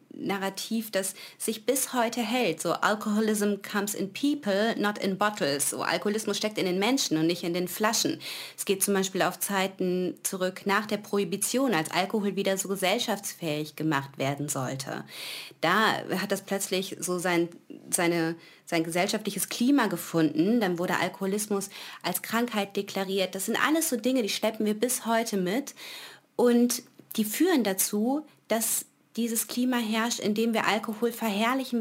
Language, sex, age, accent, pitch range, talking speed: German, female, 30-49, German, 170-225 Hz, 160 wpm